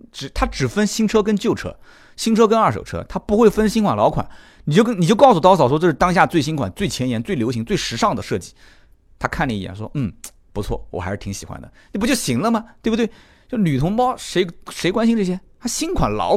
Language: Chinese